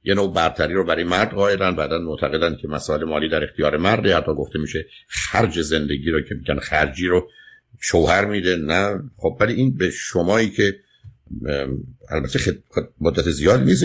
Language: Persian